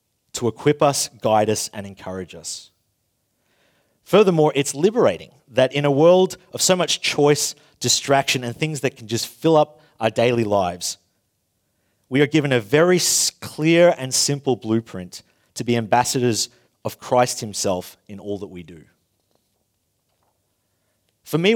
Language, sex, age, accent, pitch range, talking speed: Danish, male, 30-49, Australian, 110-150 Hz, 145 wpm